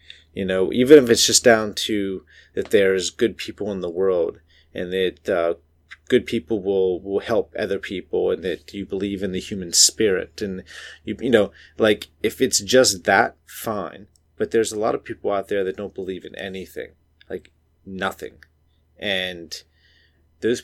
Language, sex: English, male